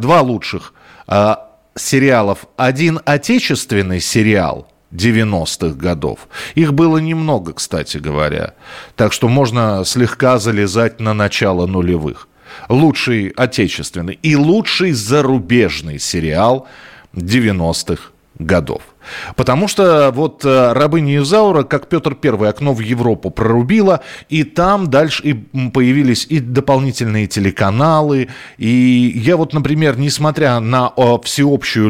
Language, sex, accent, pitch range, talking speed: Russian, male, native, 100-140 Hz, 105 wpm